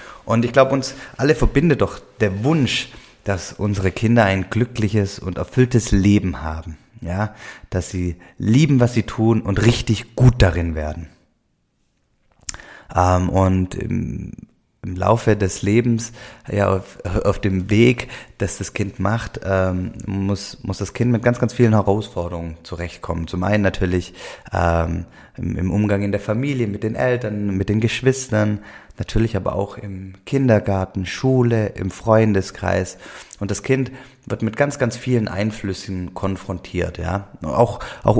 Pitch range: 95-115 Hz